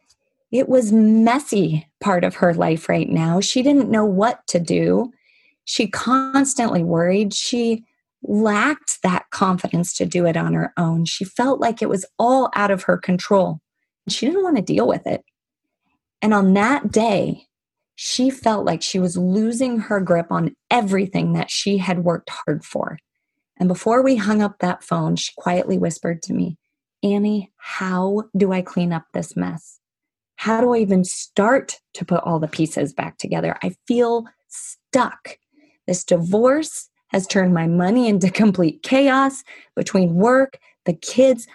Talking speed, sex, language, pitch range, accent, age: 165 wpm, female, English, 180-245 Hz, American, 30-49